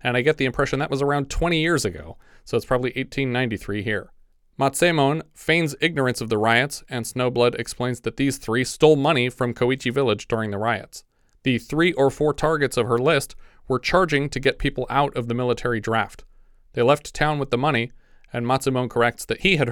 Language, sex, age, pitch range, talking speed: English, male, 30-49, 115-140 Hz, 200 wpm